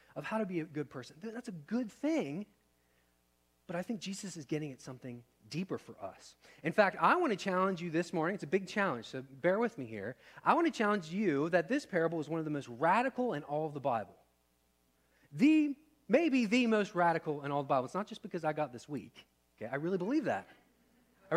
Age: 30-49